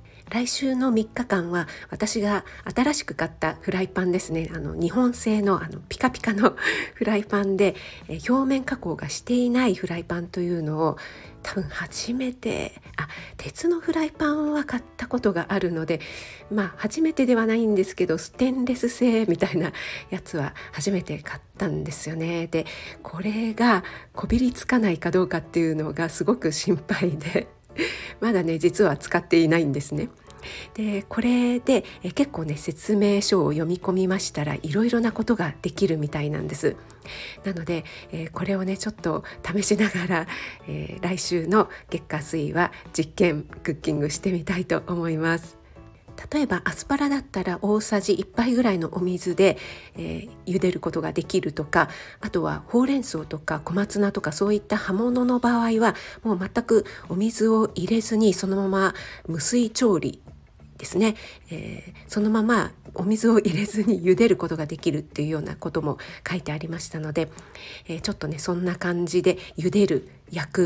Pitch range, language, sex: 165-220 Hz, Japanese, female